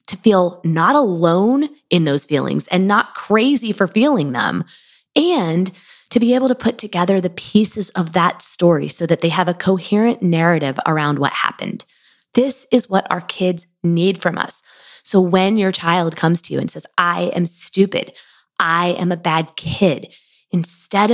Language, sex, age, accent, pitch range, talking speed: English, female, 20-39, American, 170-215 Hz, 175 wpm